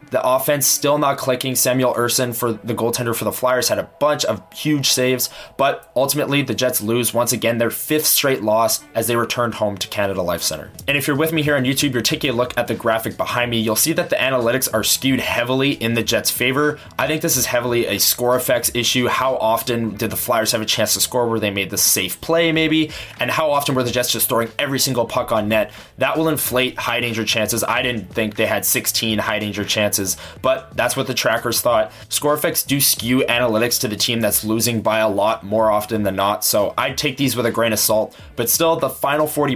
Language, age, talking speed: English, 20-39, 240 wpm